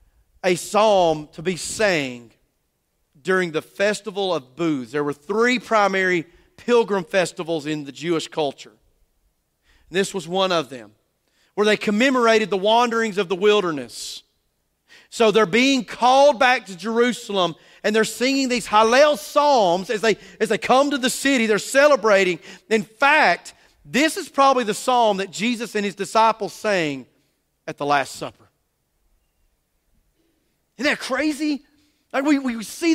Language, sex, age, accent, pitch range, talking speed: English, male, 40-59, American, 180-255 Hz, 145 wpm